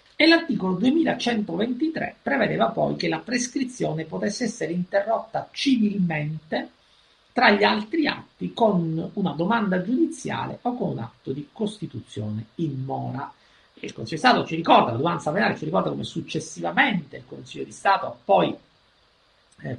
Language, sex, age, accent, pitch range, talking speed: Italian, male, 50-69, native, 140-210 Hz, 145 wpm